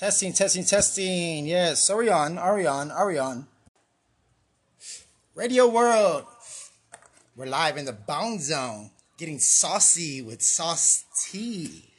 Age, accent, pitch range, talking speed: 20-39, American, 135-185 Hz, 130 wpm